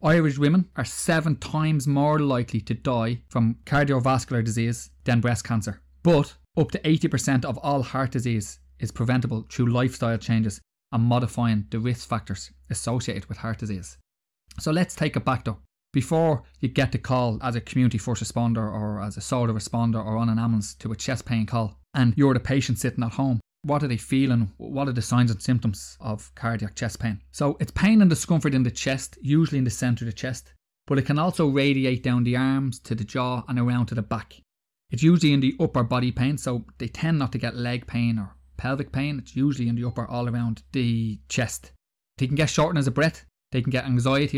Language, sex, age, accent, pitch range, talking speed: English, male, 20-39, Irish, 110-135 Hz, 210 wpm